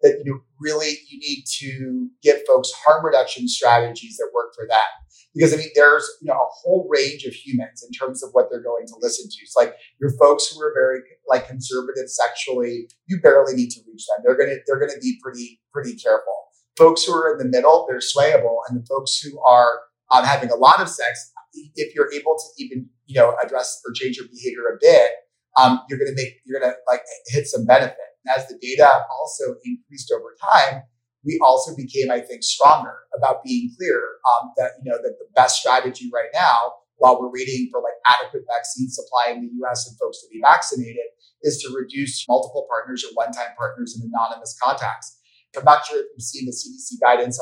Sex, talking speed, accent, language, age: male, 210 wpm, American, English, 30-49